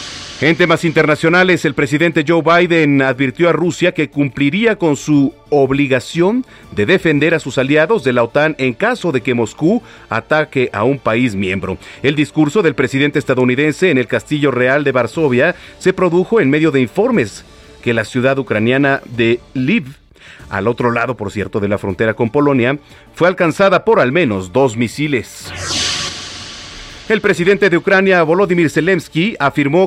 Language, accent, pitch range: Spanish, Mexican, 125-165 Hz